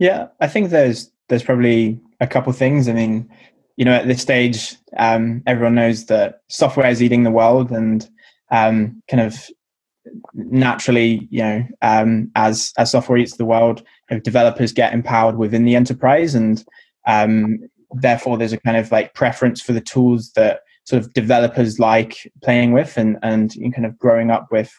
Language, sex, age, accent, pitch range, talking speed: English, male, 20-39, British, 115-125 Hz, 180 wpm